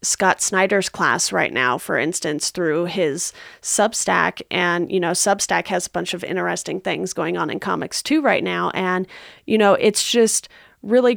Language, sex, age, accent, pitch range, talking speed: English, female, 30-49, American, 185-210 Hz, 175 wpm